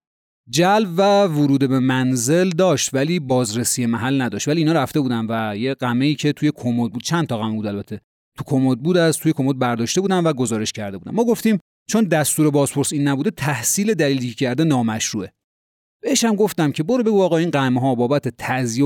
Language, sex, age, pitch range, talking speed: Persian, male, 30-49, 125-175 Hz, 195 wpm